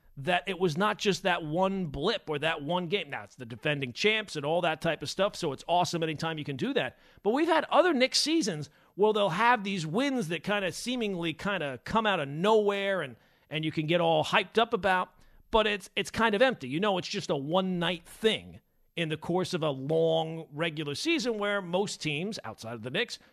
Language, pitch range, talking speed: English, 160-205 Hz, 230 wpm